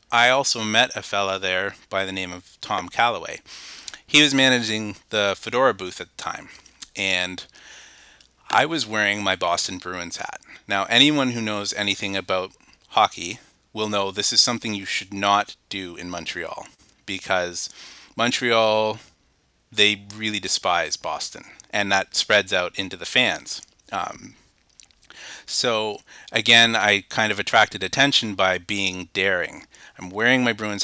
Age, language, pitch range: 30-49, English, 95-115 Hz